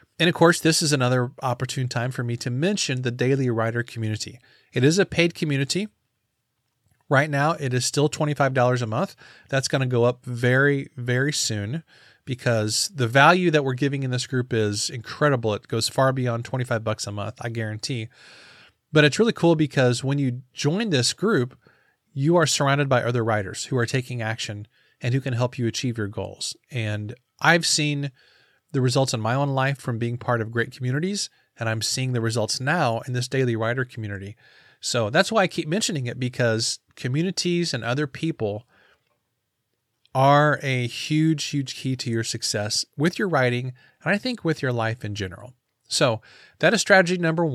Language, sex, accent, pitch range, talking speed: English, male, American, 115-150 Hz, 185 wpm